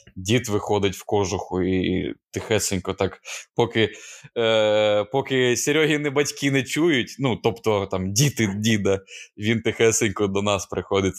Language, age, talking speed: Ukrainian, 20-39, 130 wpm